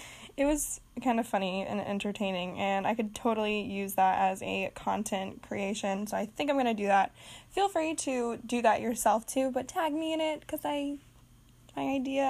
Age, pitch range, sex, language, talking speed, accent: 10-29, 210-265 Hz, female, English, 195 wpm, American